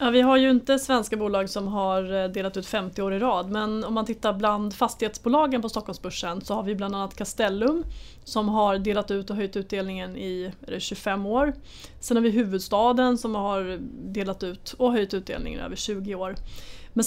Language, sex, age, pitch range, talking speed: Swedish, female, 30-49, 195-235 Hz, 190 wpm